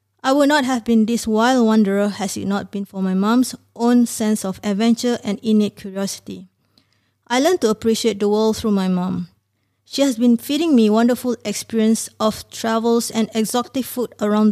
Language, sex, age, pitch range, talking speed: English, female, 20-39, 200-235 Hz, 180 wpm